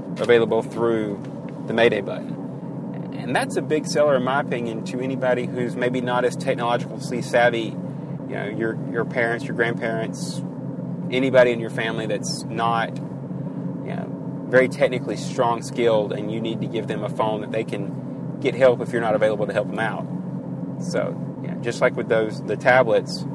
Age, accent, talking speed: 30-49, American, 180 wpm